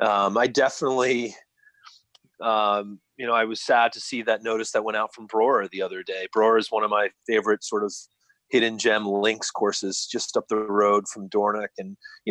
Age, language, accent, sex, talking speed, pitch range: 30-49, English, American, male, 200 wpm, 105-140 Hz